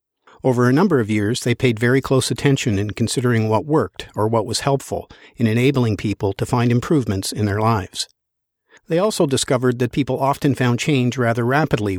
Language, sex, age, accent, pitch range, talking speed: English, male, 50-69, American, 110-135 Hz, 185 wpm